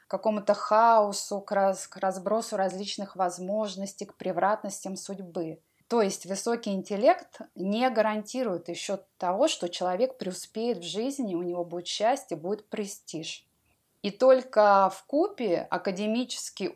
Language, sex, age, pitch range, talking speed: Russian, female, 20-39, 175-215 Hz, 125 wpm